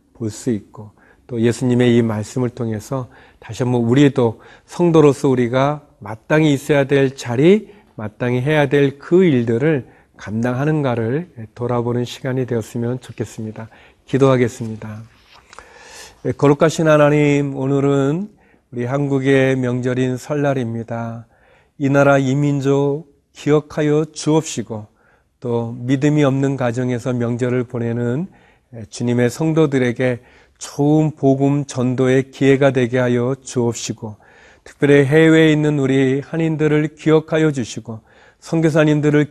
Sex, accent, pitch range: male, native, 120-145 Hz